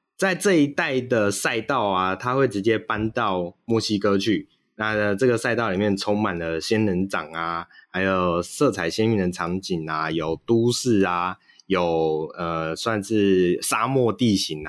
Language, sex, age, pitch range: Chinese, male, 20-39, 90-115 Hz